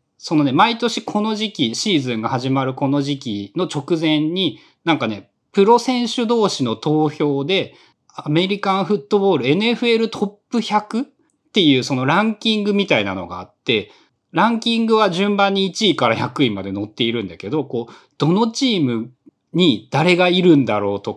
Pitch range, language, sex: 125-195 Hz, Japanese, male